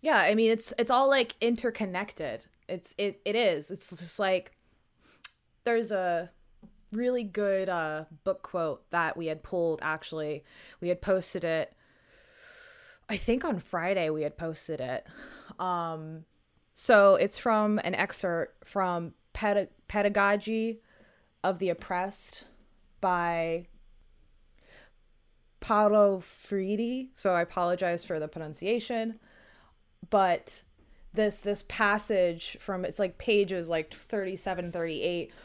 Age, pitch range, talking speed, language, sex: 20-39, 175-215 Hz, 120 wpm, English, female